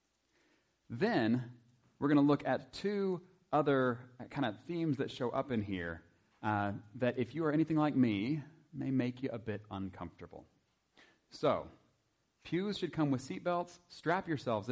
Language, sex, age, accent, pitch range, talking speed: English, male, 30-49, American, 110-150 Hz, 155 wpm